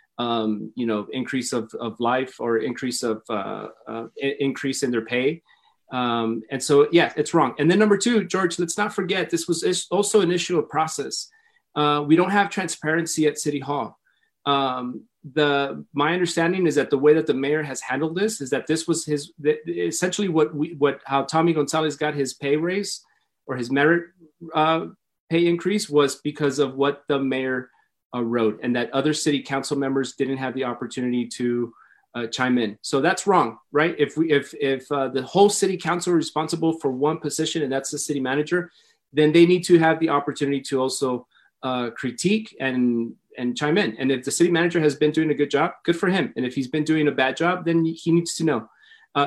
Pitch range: 130-165 Hz